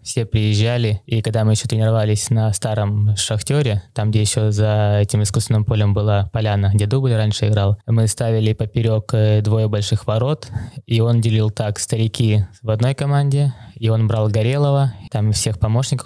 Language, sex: Russian, male